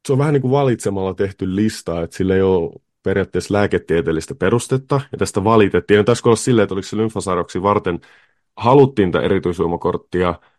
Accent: native